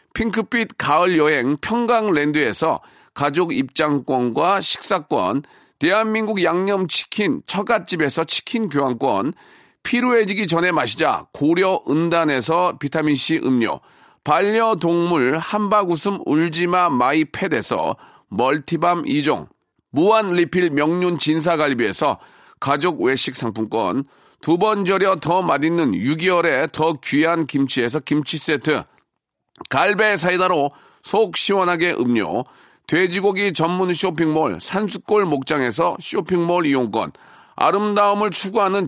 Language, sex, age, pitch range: Korean, male, 40-59, 155-205 Hz